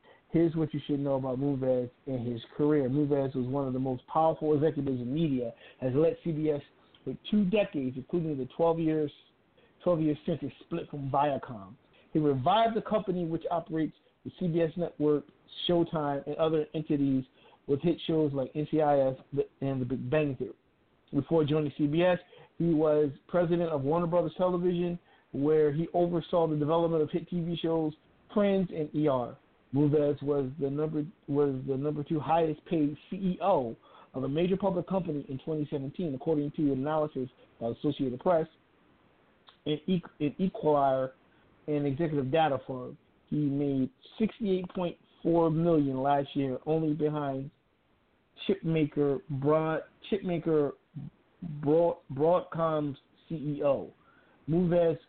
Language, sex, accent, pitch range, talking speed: English, male, American, 140-165 Hz, 140 wpm